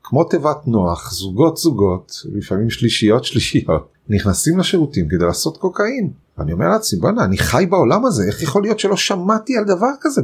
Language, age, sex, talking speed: Hebrew, 30-49, male, 150 wpm